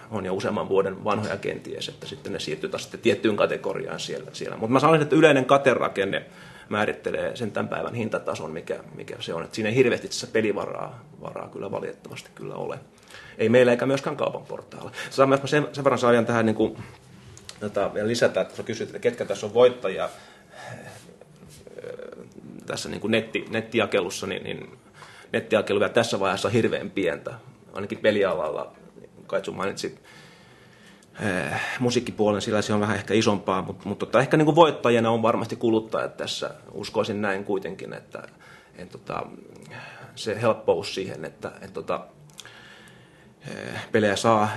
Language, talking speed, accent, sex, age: Finnish, 155 wpm, native, male, 30-49